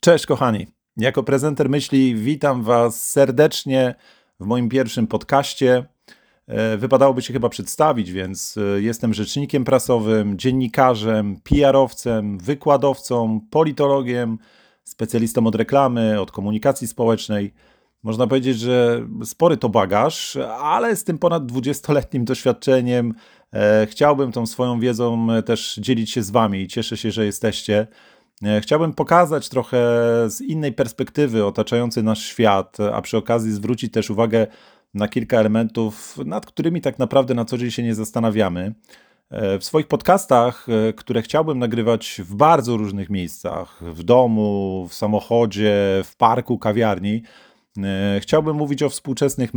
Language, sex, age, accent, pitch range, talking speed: Polish, male, 40-59, native, 110-135 Hz, 125 wpm